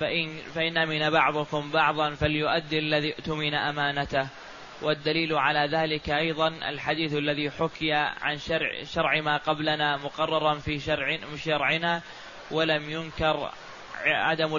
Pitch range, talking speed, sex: 150-160 Hz, 110 wpm, male